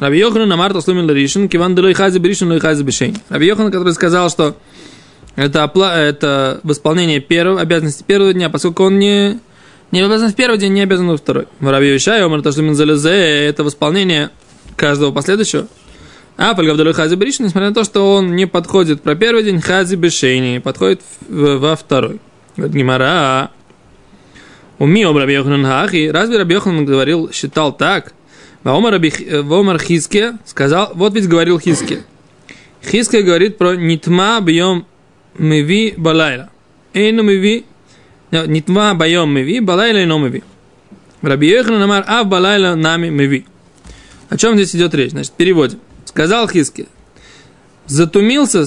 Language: Russian